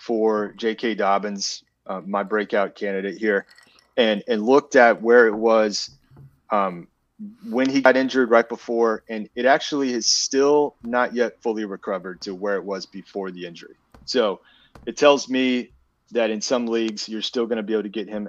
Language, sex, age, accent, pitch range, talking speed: English, male, 30-49, American, 100-125 Hz, 180 wpm